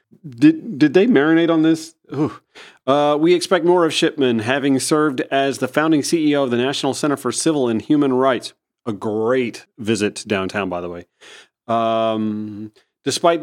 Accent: American